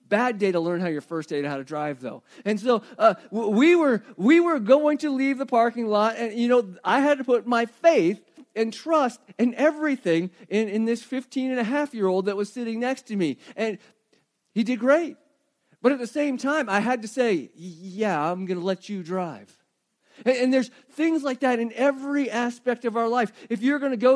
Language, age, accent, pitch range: English, 40-59, American, 210-265 Hz